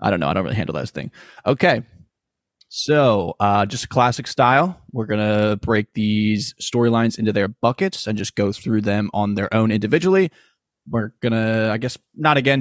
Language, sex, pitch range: English, male, 105-125 Hz